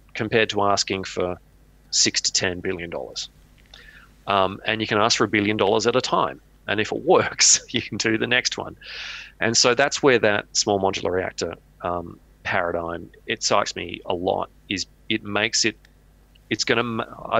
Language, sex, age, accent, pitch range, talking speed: English, male, 30-49, Australian, 90-110 Hz, 180 wpm